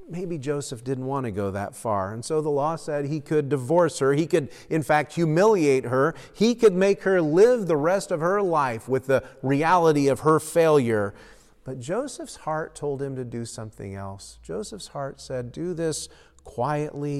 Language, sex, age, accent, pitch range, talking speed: English, male, 40-59, American, 110-160 Hz, 190 wpm